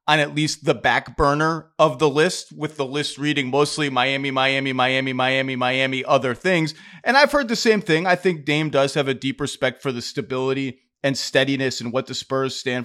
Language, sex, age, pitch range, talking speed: English, male, 30-49, 130-155 Hz, 210 wpm